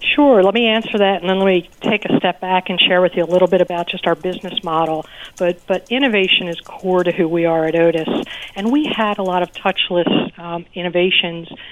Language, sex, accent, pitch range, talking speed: English, female, American, 170-195 Hz, 230 wpm